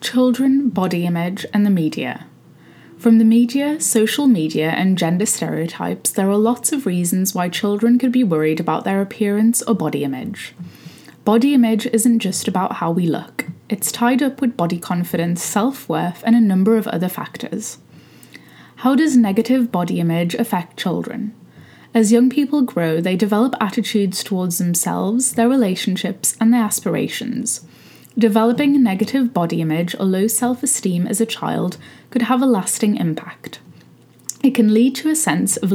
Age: 10-29